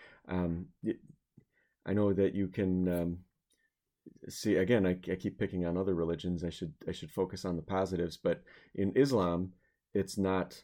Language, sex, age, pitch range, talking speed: English, male, 30-49, 90-100 Hz, 165 wpm